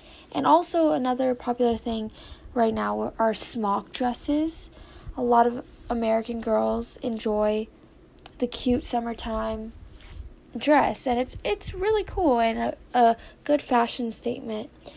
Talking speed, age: 130 wpm, 10-29